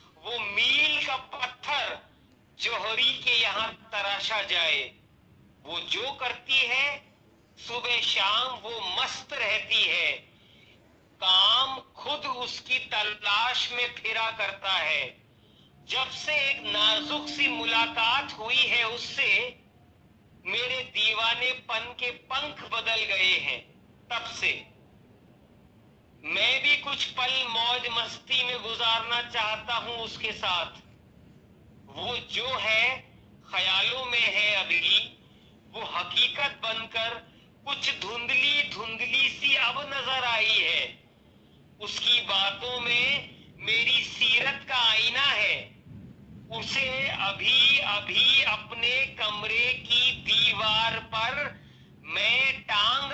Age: 50-69